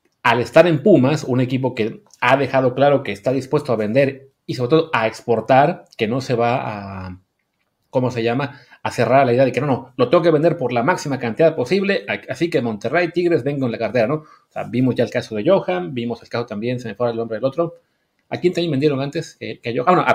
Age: 30-49